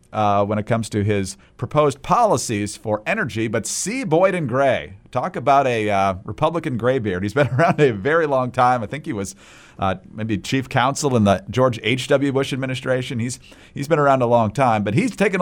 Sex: male